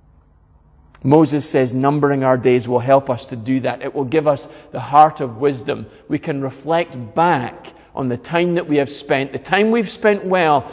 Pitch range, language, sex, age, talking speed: 130-175 Hz, English, male, 40-59, 195 wpm